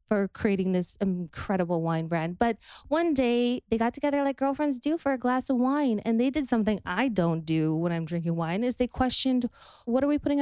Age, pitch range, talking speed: 20-39, 195-260 Hz, 220 wpm